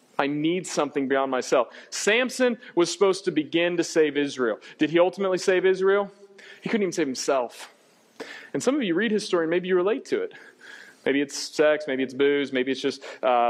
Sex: male